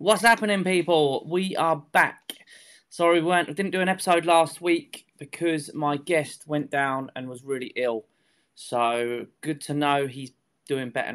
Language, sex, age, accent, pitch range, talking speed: English, male, 20-39, British, 130-160 Hz, 170 wpm